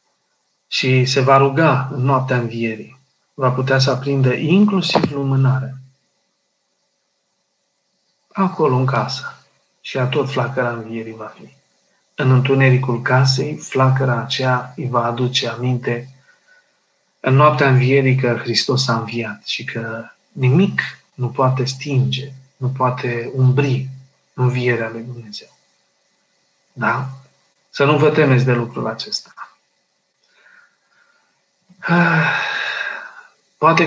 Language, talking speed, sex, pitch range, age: Romanian, 105 wpm, male, 125-145 Hz, 40-59